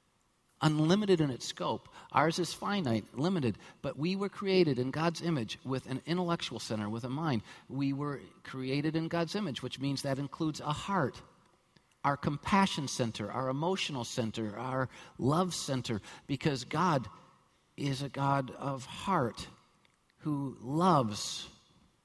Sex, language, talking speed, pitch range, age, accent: male, English, 140 wpm, 135-175 Hz, 50-69, American